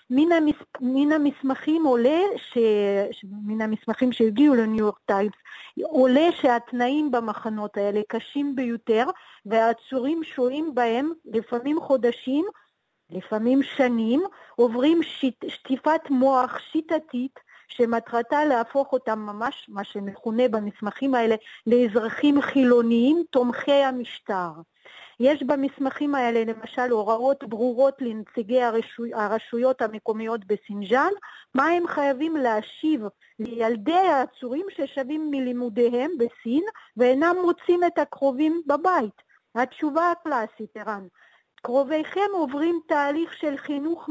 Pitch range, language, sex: 230-300 Hz, Hebrew, female